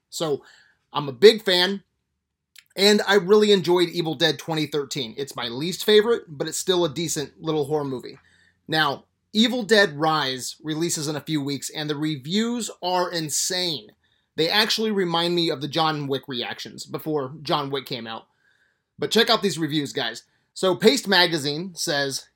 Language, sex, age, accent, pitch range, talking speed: English, male, 30-49, American, 145-180 Hz, 165 wpm